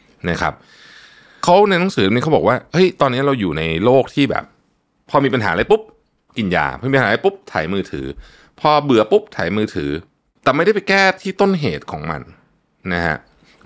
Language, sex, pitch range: Thai, male, 90-140 Hz